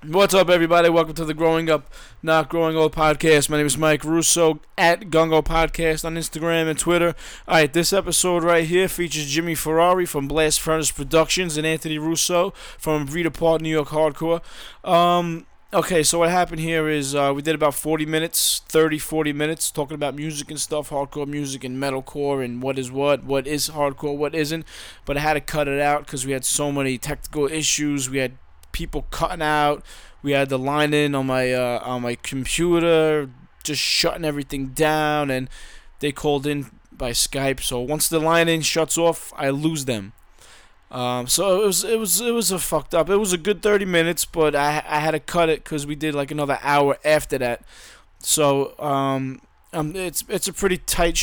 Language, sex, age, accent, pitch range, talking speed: English, male, 20-39, American, 145-170 Hz, 200 wpm